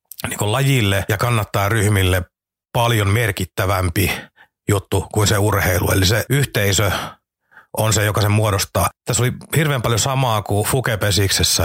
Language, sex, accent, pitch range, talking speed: Finnish, male, native, 95-120 Hz, 135 wpm